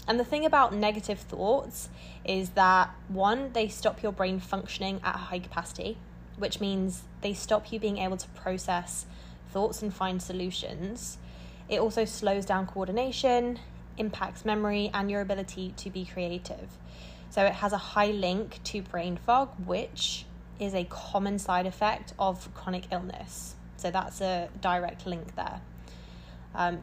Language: English